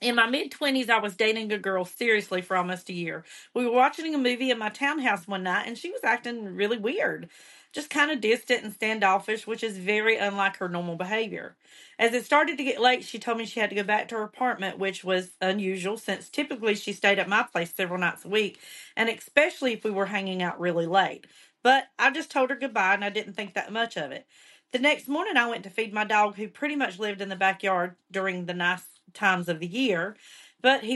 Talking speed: 235 wpm